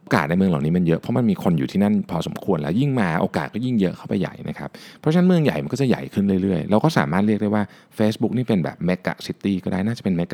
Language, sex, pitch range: Thai, male, 80-130 Hz